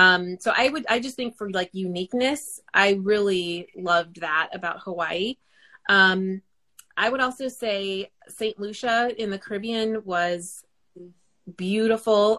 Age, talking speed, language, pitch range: 30-49, 135 wpm, English, 185-230 Hz